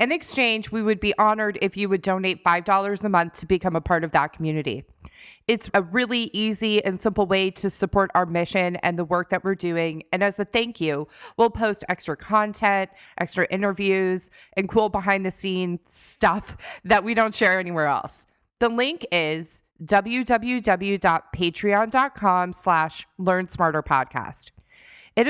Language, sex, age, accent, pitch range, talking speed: English, female, 30-49, American, 175-215 Hz, 160 wpm